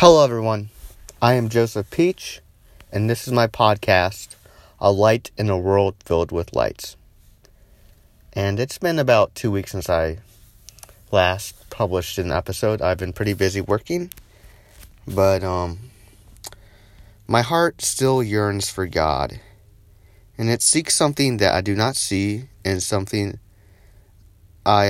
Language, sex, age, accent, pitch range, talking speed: English, male, 30-49, American, 95-115 Hz, 135 wpm